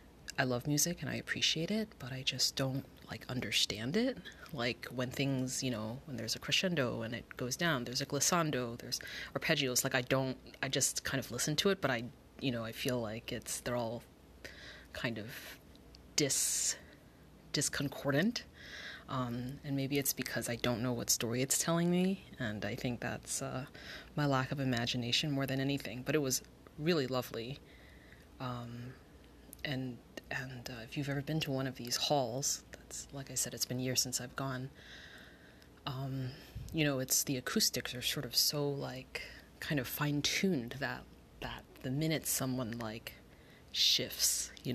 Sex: female